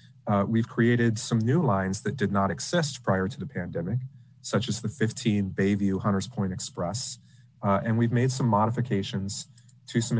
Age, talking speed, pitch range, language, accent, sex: 30-49, 170 wpm, 100-125 Hz, English, American, male